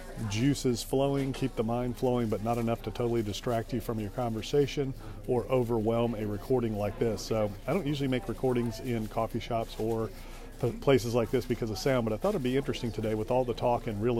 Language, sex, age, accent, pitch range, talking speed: English, male, 40-59, American, 110-120 Hz, 215 wpm